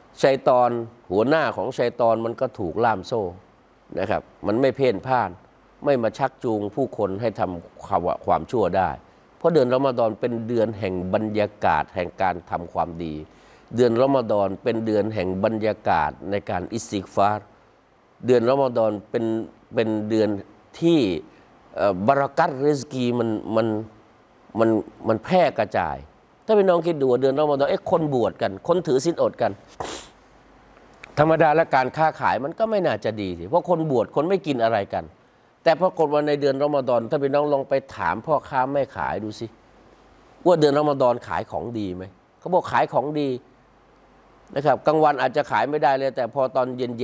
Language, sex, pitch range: Thai, male, 110-140 Hz